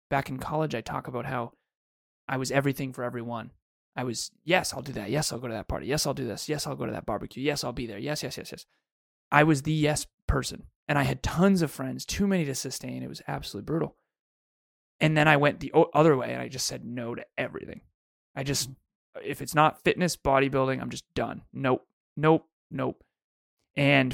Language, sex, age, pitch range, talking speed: English, male, 20-39, 130-175 Hz, 220 wpm